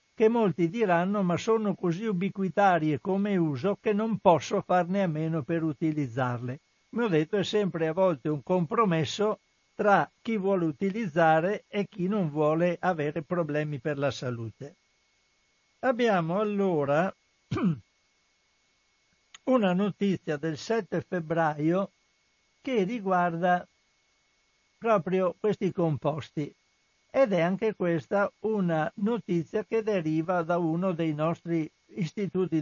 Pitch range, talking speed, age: 160-205 Hz, 120 wpm, 60-79